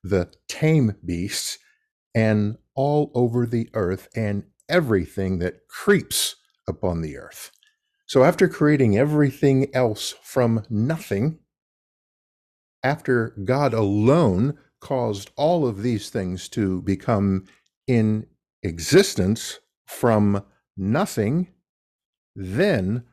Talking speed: 95 wpm